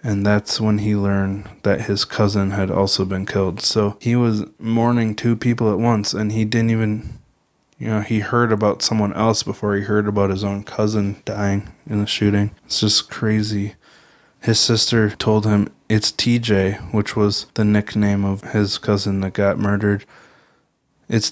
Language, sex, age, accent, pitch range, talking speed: English, male, 20-39, American, 100-115 Hz, 175 wpm